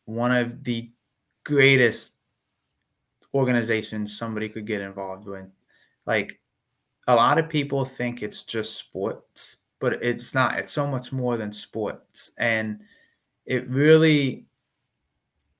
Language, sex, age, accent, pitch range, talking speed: English, male, 20-39, American, 110-130 Hz, 120 wpm